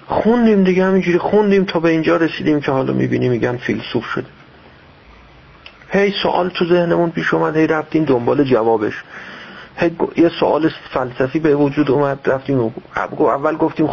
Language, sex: Persian, male